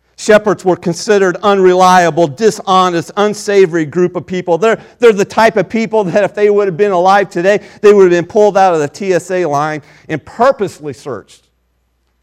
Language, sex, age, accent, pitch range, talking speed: English, male, 40-59, American, 135-200 Hz, 175 wpm